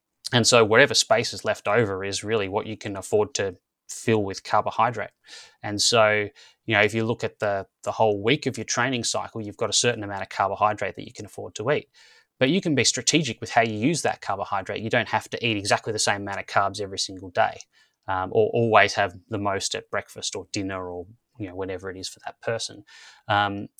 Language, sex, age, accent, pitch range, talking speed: English, male, 20-39, Australian, 95-110 Hz, 230 wpm